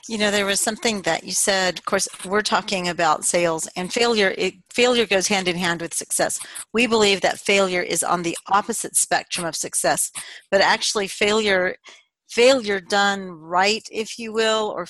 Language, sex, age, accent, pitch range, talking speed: English, female, 40-59, American, 185-220 Hz, 175 wpm